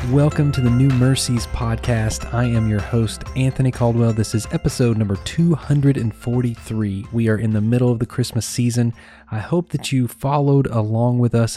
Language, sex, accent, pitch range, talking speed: English, male, American, 110-135 Hz, 175 wpm